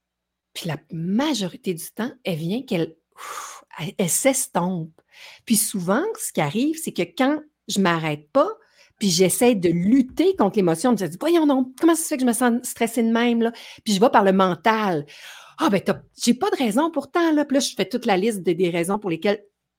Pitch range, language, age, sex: 180-245 Hz, French, 50-69, female